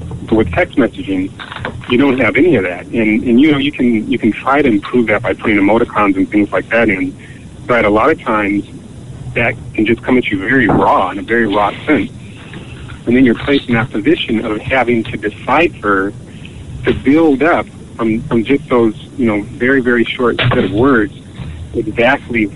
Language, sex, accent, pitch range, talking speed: English, male, American, 105-125 Hz, 200 wpm